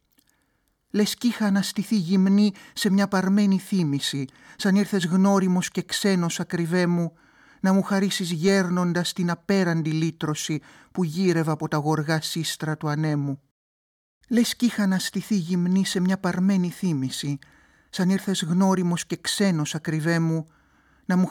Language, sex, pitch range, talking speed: Greek, male, 140-180 Hz, 145 wpm